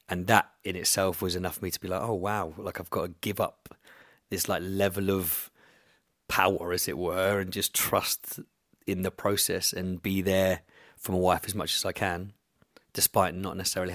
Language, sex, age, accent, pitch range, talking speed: English, male, 30-49, British, 95-110 Hz, 200 wpm